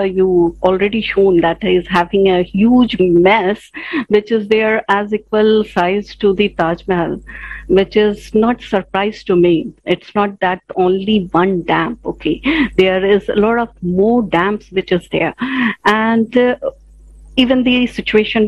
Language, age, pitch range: English, 50-69, 195-265 Hz